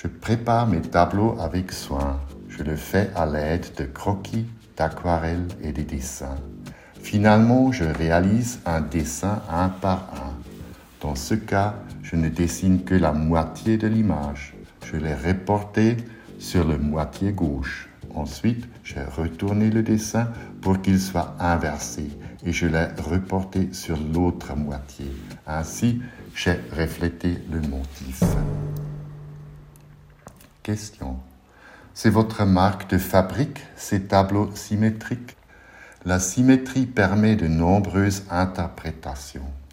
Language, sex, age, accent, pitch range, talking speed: French, male, 60-79, French, 80-110 Hz, 120 wpm